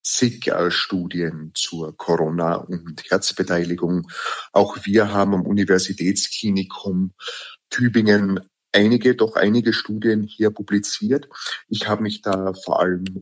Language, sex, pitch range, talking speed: German, male, 95-110 Hz, 105 wpm